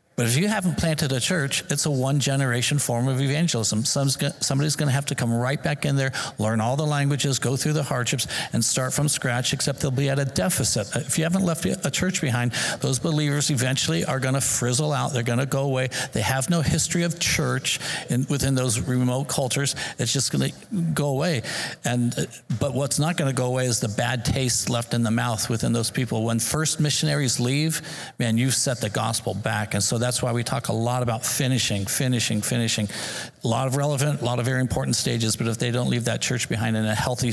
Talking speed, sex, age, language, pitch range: 225 wpm, male, 50-69, English, 115-140 Hz